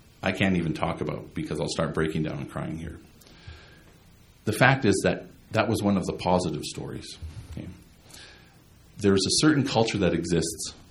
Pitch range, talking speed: 85-110 Hz, 170 wpm